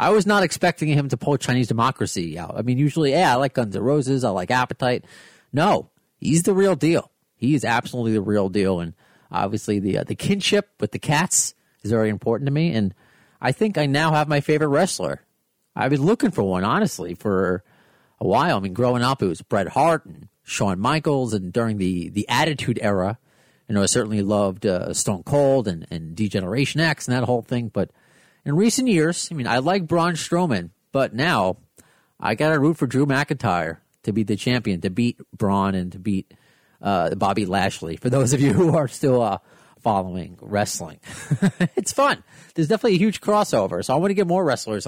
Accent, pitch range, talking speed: American, 105-155 Hz, 205 wpm